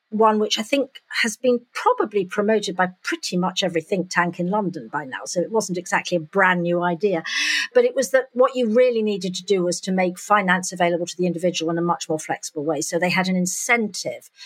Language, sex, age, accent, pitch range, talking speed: English, female, 50-69, British, 175-235 Hz, 230 wpm